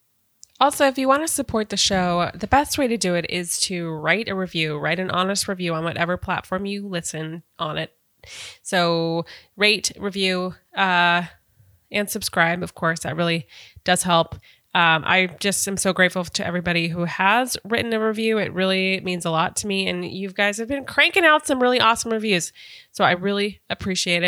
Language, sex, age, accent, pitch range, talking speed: English, female, 20-39, American, 175-220 Hz, 190 wpm